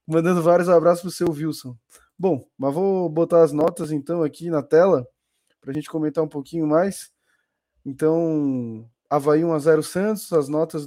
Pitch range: 150-170 Hz